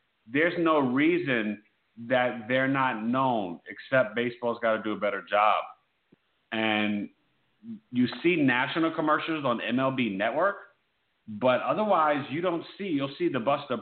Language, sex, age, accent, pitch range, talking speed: English, male, 40-59, American, 115-145 Hz, 140 wpm